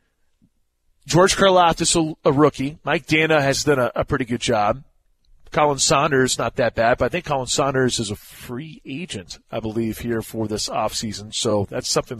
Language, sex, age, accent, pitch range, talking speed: English, male, 40-59, American, 115-155 Hz, 175 wpm